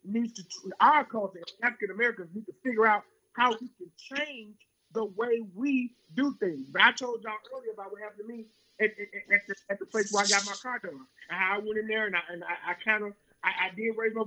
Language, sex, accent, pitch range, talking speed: English, male, American, 190-245 Hz, 250 wpm